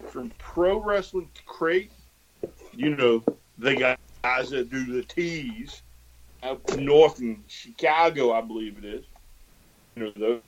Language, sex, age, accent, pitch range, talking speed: English, male, 50-69, American, 115-165 Hz, 145 wpm